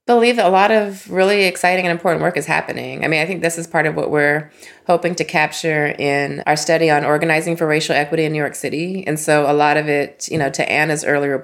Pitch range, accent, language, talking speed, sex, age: 140-160 Hz, American, English, 250 wpm, female, 20-39